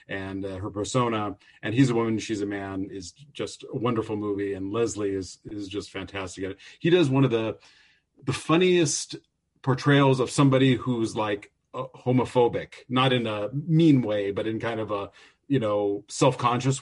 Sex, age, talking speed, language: male, 40-59, 175 wpm, English